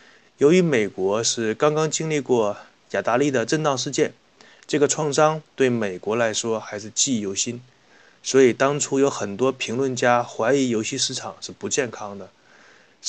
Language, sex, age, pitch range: Chinese, male, 20-39, 115-145 Hz